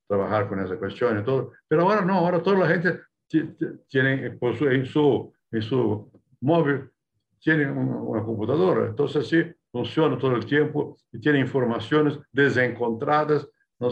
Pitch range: 110-150 Hz